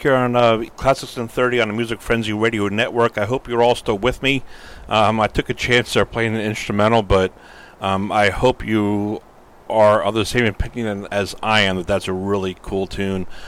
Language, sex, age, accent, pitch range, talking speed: English, male, 40-59, American, 90-110 Hz, 210 wpm